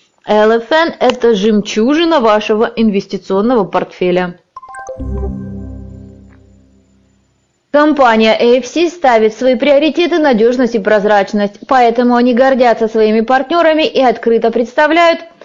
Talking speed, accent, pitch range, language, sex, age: 85 wpm, native, 215-275 Hz, Russian, female, 20-39